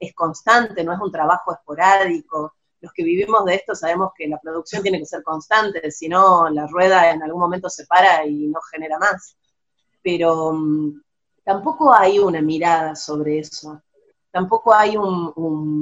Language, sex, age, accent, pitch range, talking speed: Spanish, female, 30-49, Argentinian, 160-195 Hz, 165 wpm